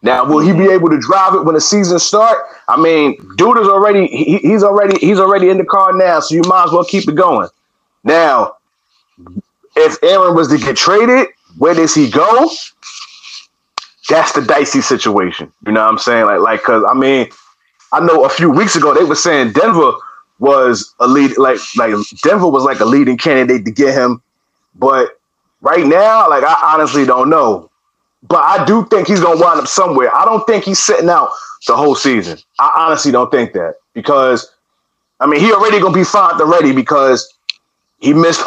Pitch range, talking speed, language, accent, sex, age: 155-225 Hz, 195 wpm, English, American, male, 30-49